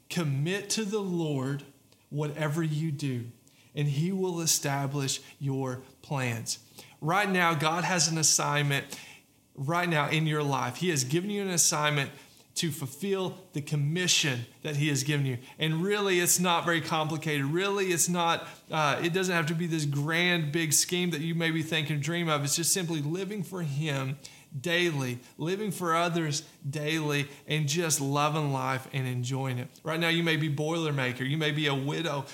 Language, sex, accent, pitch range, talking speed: English, male, American, 140-165 Hz, 175 wpm